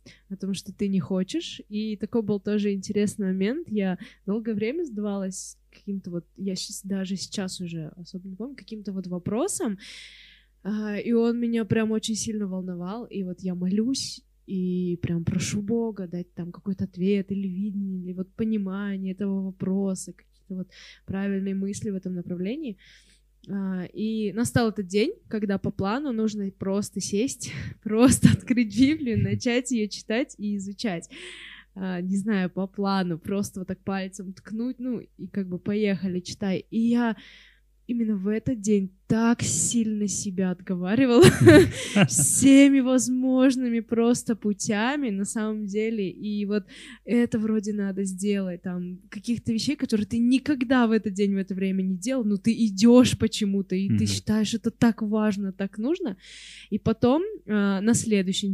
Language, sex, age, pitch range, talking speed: Russian, female, 20-39, 190-235 Hz, 150 wpm